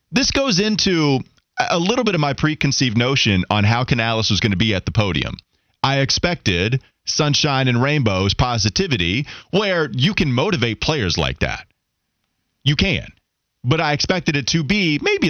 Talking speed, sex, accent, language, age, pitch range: 165 wpm, male, American, English, 30-49, 115-155 Hz